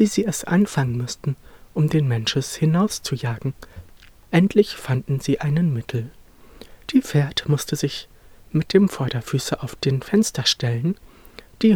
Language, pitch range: German, 125-190 Hz